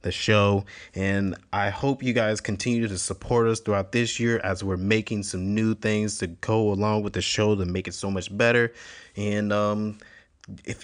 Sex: male